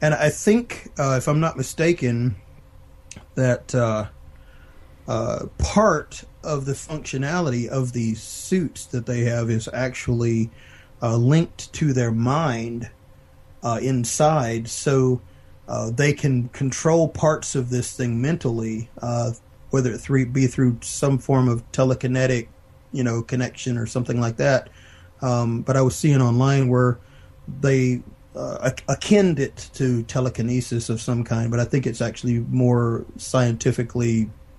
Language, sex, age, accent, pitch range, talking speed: English, male, 30-49, American, 115-130 Hz, 135 wpm